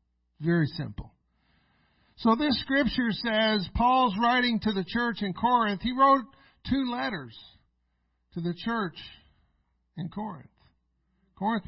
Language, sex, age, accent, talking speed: English, male, 50-69, American, 120 wpm